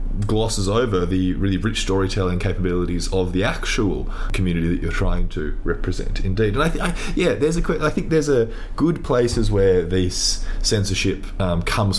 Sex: male